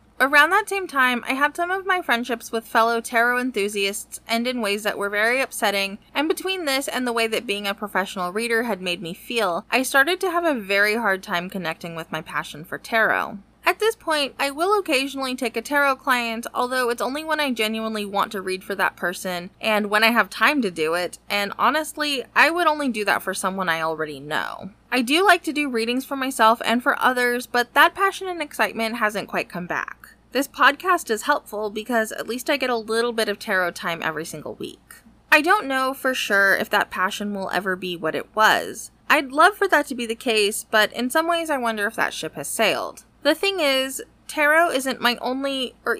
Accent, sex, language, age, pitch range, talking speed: American, female, English, 20-39, 200-275 Hz, 225 wpm